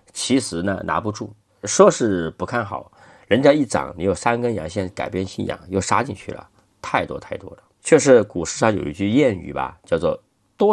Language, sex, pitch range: Chinese, male, 95-135 Hz